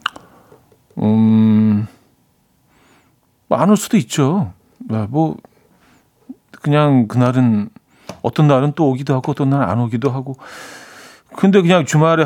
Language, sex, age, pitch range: Korean, male, 40-59, 115-155 Hz